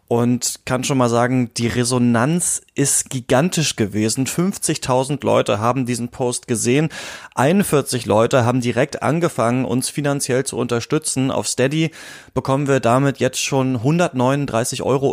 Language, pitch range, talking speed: German, 120-150 Hz, 135 wpm